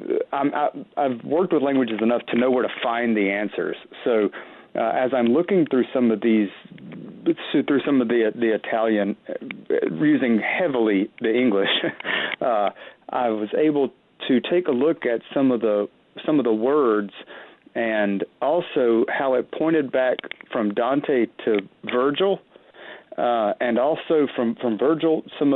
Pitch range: 110-160 Hz